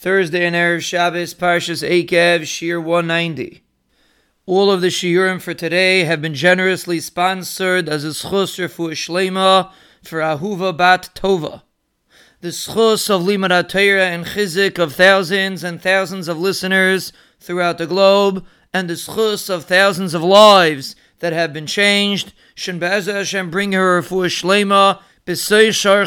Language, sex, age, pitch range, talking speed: English, male, 40-59, 170-200 Hz, 140 wpm